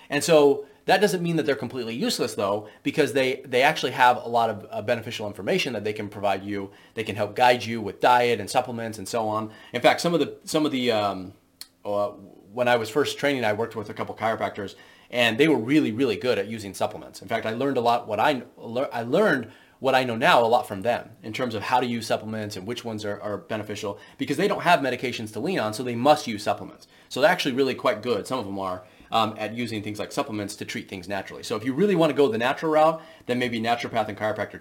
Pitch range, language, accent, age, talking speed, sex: 105-145 Hz, English, American, 30-49, 255 wpm, male